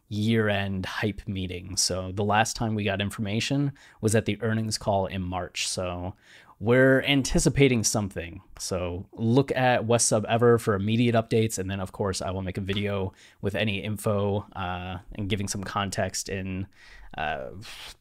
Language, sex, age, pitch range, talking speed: English, male, 20-39, 95-115 Hz, 165 wpm